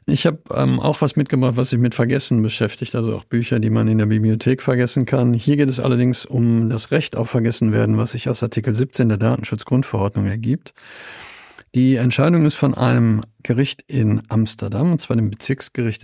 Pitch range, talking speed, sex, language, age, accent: 115-135 Hz, 185 wpm, male, German, 50-69, German